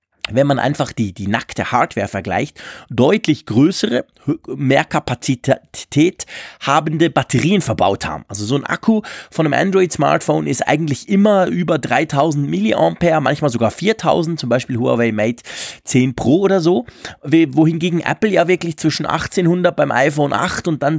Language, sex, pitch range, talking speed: German, male, 130-170 Hz, 145 wpm